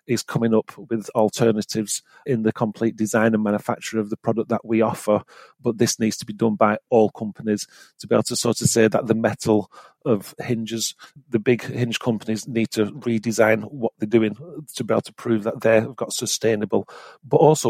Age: 40-59